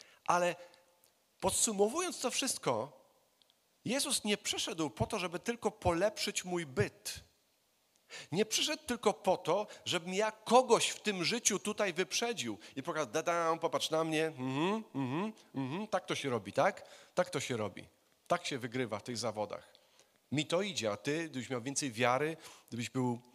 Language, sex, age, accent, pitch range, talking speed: Polish, male, 40-59, native, 140-200 Hz, 150 wpm